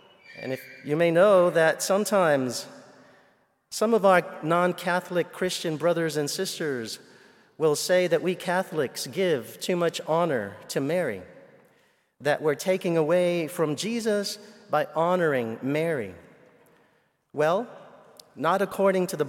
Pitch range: 155-195 Hz